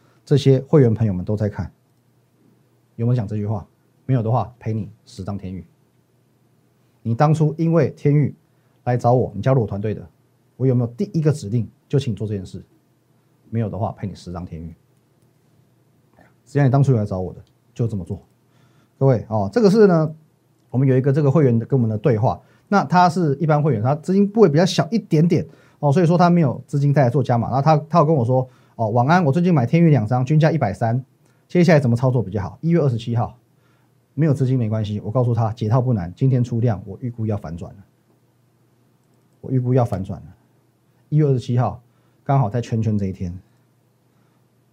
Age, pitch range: 30-49, 115-140 Hz